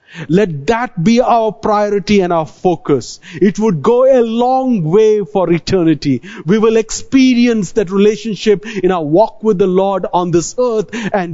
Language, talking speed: English, 165 wpm